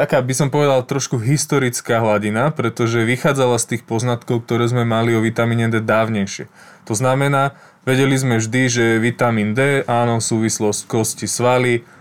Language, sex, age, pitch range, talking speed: Slovak, male, 20-39, 110-125 Hz, 155 wpm